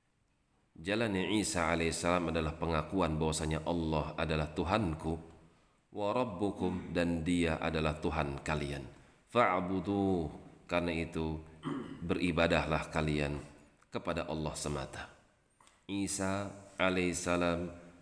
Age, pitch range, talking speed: 40-59, 80-90 Hz, 85 wpm